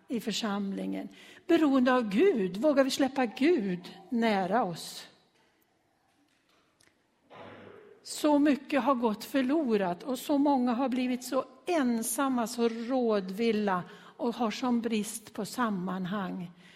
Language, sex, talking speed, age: Swedish, female, 110 wpm, 60-79